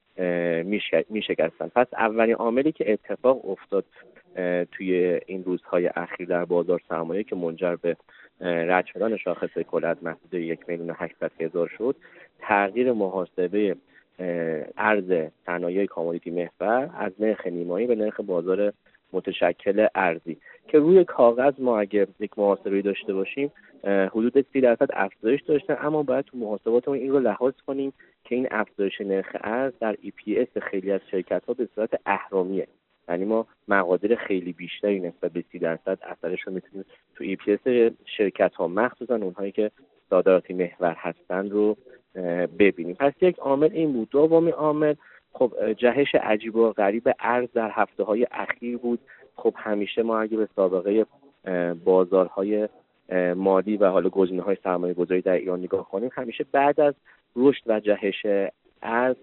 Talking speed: 150 wpm